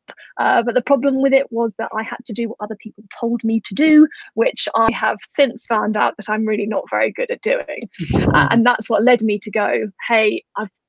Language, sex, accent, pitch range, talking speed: English, female, British, 225-270 Hz, 235 wpm